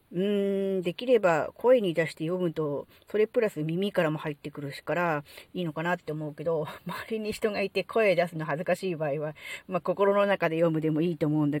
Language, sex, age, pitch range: Japanese, female, 40-59, 155-215 Hz